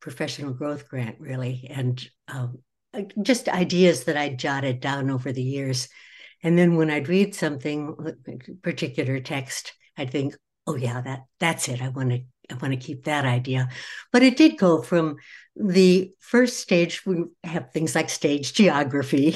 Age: 60-79